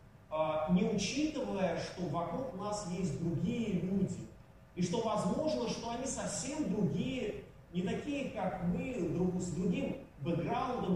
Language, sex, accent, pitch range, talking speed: Russian, male, native, 175-220 Hz, 120 wpm